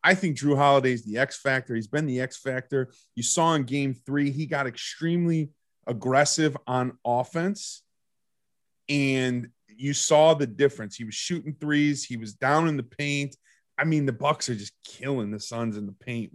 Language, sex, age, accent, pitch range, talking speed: English, male, 30-49, American, 115-145 Hz, 185 wpm